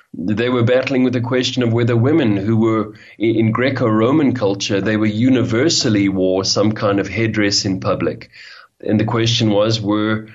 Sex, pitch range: male, 100-120 Hz